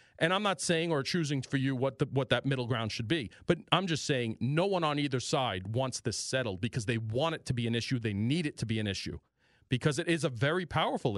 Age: 40-59